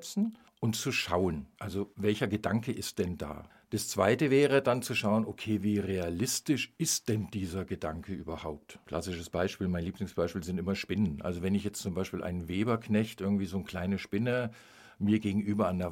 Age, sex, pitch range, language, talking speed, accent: 50-69, male, 100-130 Hz, German, 175 wpm, German